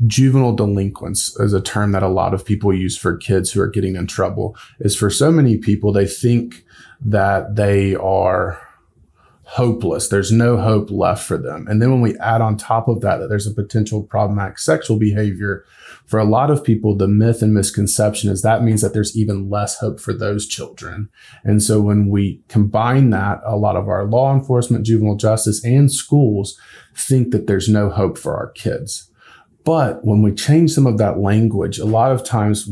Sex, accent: male, American